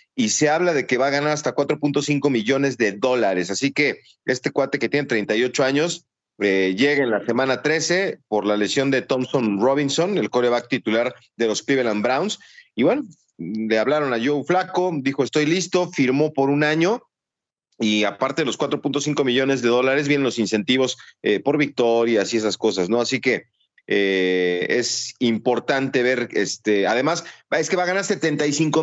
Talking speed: 180 wpm